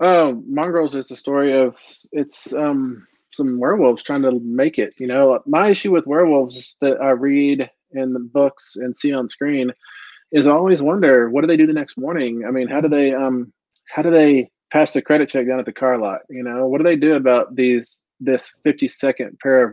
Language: English